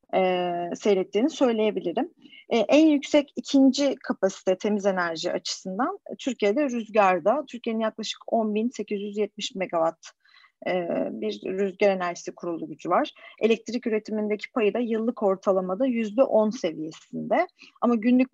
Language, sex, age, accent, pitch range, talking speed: Turkish, female, 40-59, native, 185-240 Hz, 110 wpm